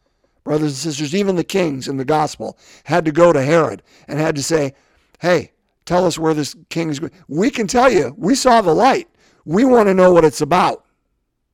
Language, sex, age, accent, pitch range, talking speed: English, male, 50-69, American, 115-155 Hz, 215 wpm